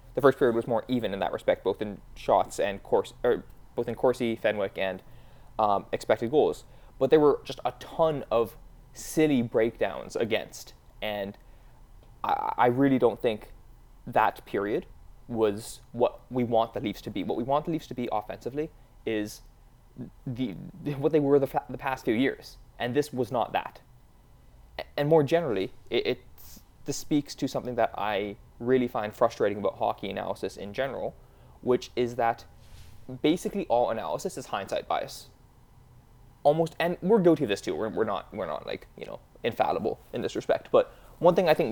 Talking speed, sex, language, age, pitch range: 180 wpm, male, English, 20-39, 115-145 Hz